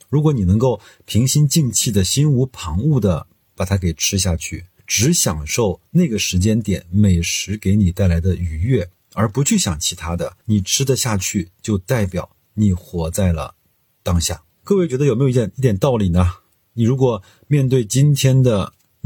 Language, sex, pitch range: Chinese, male, 90-125 Hz